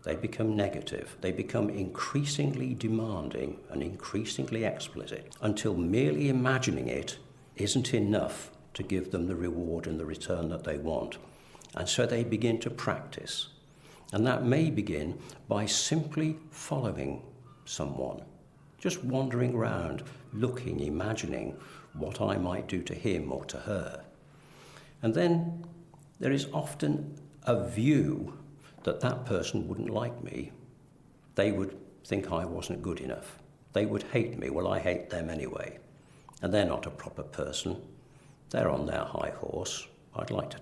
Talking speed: 145 wpm